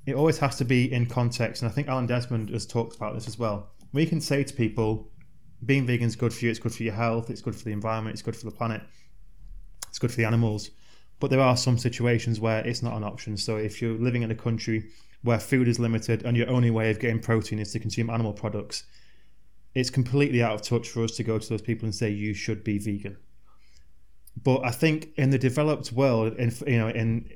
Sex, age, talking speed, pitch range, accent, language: male, 20-39, 240 wpm, 110-125 Hz, British, Ukrainian